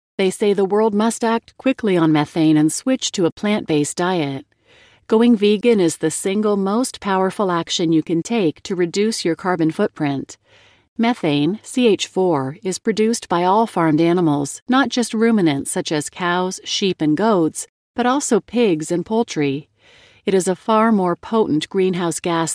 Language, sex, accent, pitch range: English, female, American, 160-220 Hz